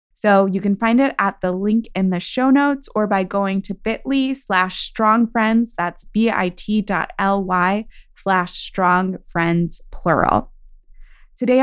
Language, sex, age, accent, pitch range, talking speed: English, female, 20-39, American, 185-230 Hz, 145 wpm